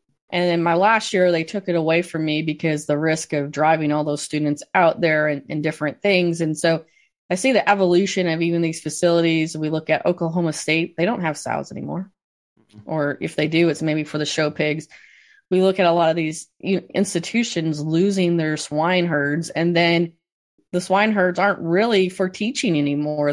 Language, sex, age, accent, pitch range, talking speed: English, female, 20-39, American, 155-180 Hz, 195 wpm